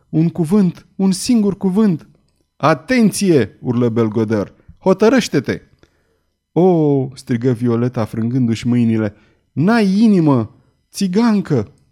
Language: Romanian